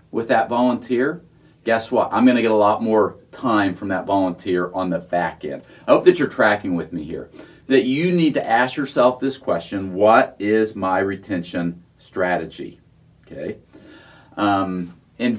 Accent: American